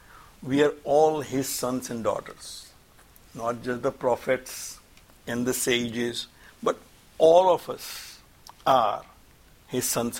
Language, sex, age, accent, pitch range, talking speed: English, male, 60-79, Indian, 115-140 Hz, 125 wpm